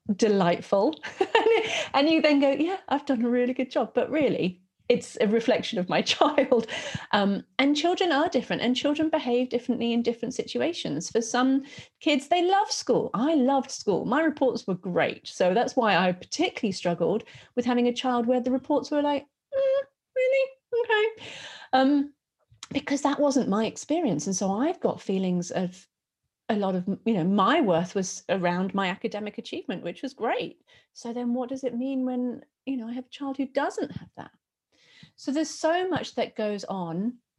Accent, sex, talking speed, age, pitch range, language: British, female, 185 wpm, 40-59, 185-275 Hz, English